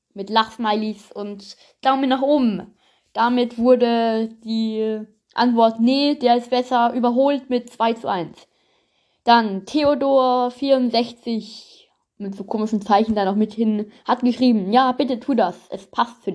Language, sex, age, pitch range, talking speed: German, female, 20-39, 210-250 Hz, 140 wpm